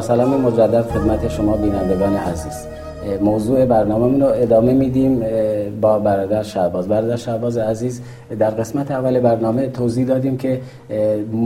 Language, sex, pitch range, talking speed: Persian, male, 105-130 Hz, 125 wpm